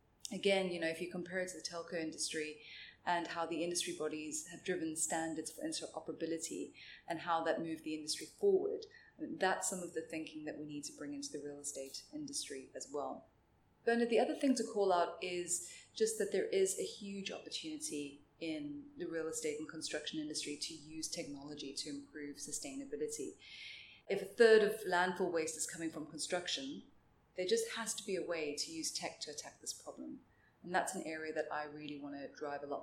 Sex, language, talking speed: female, English, 200 wpm